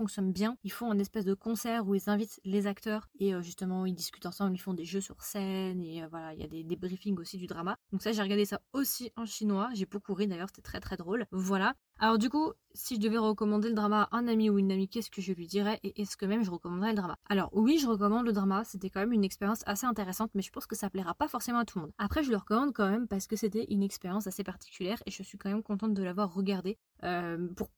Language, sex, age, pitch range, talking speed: French, female, 20-39, 195-220 Hz, 280 wpm